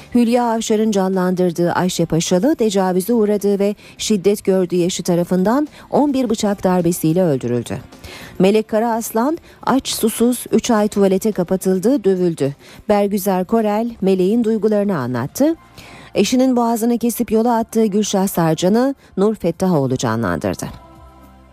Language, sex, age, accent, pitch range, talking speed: Turkish, female, 40-59, native, 175-220 Hz, 110 wpm